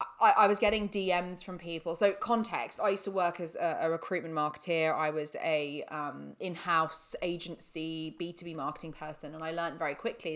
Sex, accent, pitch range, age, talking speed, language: female, British, 160-200 Hz, 20-39, 185 wpm, English